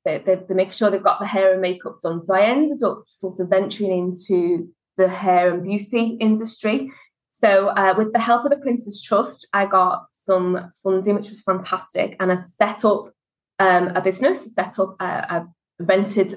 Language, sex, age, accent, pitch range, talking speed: English, female, 20-39, British, 180-210 Hz, 185 wpm